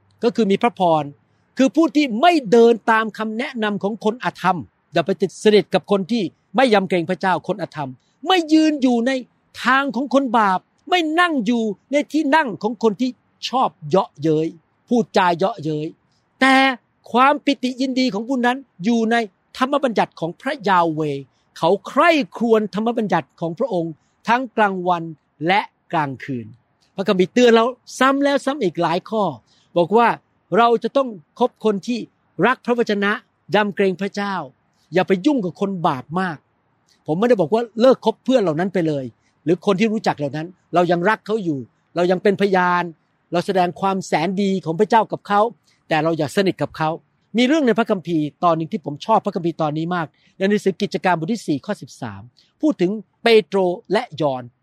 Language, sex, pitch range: Thai, male, 165-235 Hz